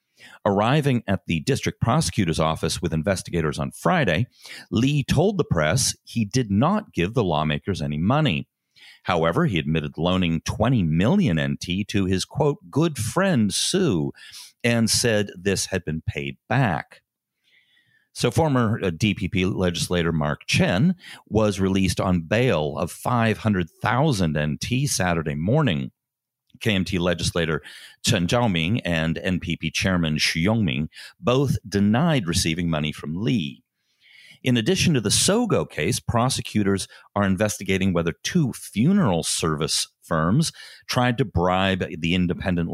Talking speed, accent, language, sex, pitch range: 130 wpm, American, English, male, 85-115 Hz